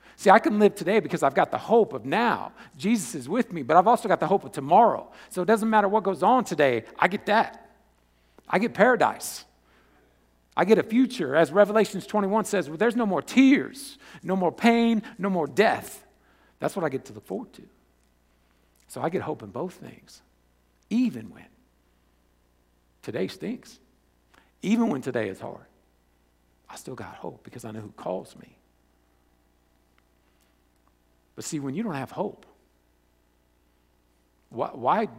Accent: American